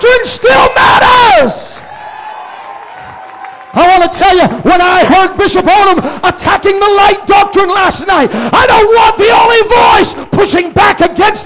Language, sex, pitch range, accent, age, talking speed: English, male, 350-425 Hz, American, 50-69, 140 wpm